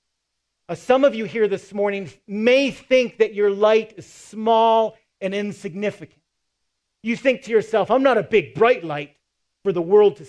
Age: 40-59